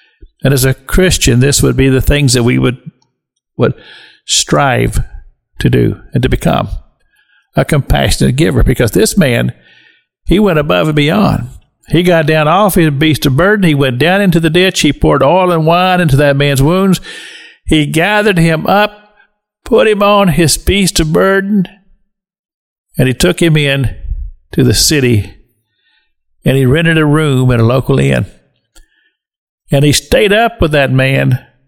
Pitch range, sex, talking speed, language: 125-175 Hz, male, 165 wpm, English